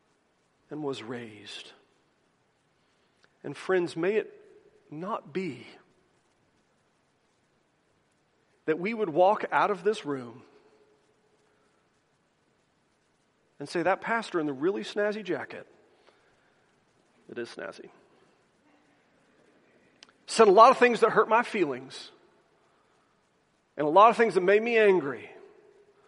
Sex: male